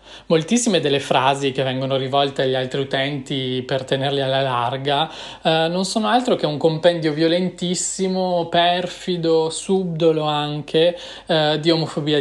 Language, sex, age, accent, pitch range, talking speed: Italian, male, 20-39, native, 140-175 Hz, 135 wpm